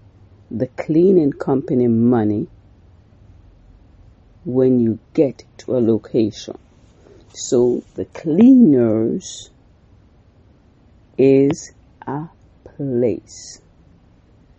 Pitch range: 100-130 Hz